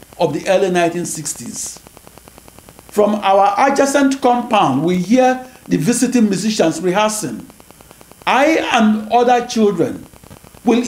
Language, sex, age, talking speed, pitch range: English, male, 50-69, 105 wpm, 170-235 Hz